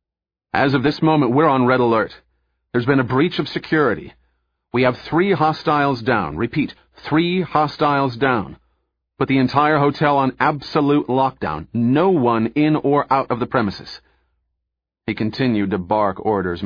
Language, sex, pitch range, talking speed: English, male, 90-125 Hz, 155 wpm